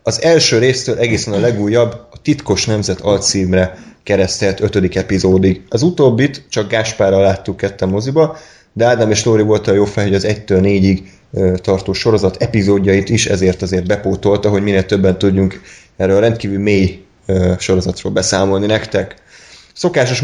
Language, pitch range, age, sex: Hungarian, 95-120 Hz, 20-39, male